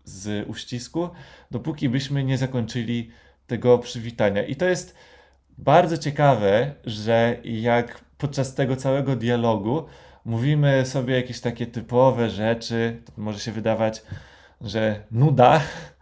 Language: Polish